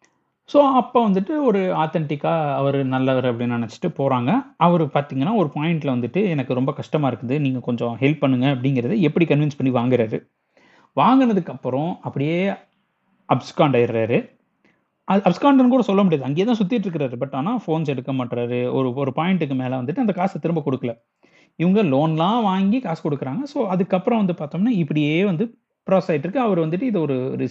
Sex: male